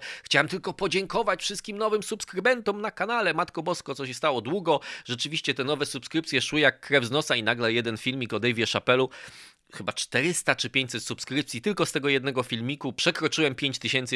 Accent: native